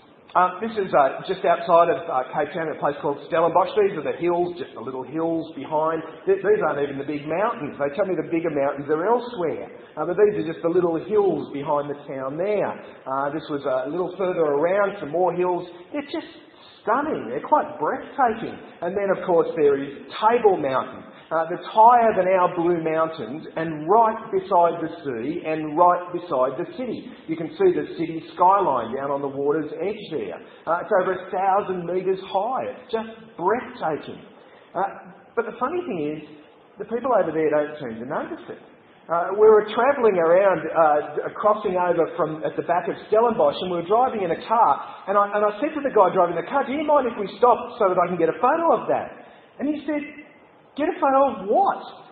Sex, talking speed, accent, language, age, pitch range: male, 210 wpm, Australian, English, 40-59, 165-265 Hz